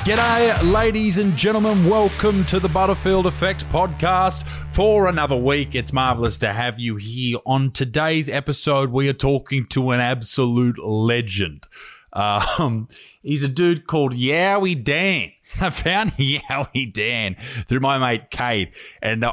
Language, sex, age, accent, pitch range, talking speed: English, male, 20-39, Australian, 105-145 Hz, 140 wpm